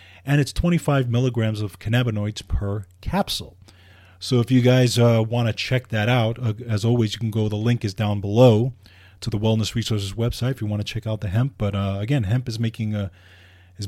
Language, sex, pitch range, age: English, male, 100-125 Hz, 30-49